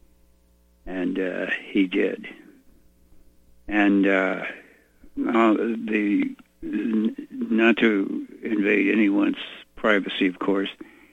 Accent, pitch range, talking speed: American, 85-115 Hz, 75 wpm